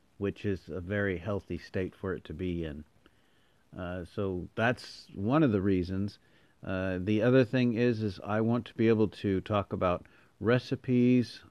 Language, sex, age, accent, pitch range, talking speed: English, male, 50-69, American, 90-105 Hz, 170 wpm